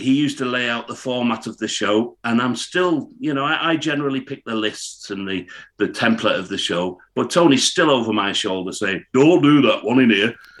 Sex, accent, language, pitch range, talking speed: male, British, English, 100-140 Hz, 225 wpm